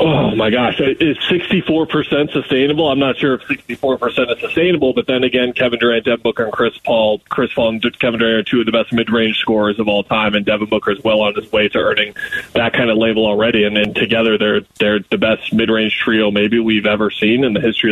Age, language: 20-39, English